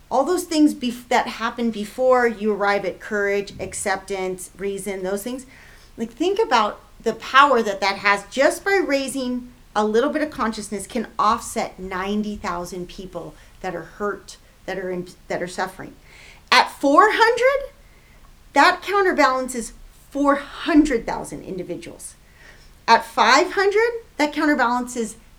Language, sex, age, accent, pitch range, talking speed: English, female, 30-49, American, 200-275 Hz, 130 wpm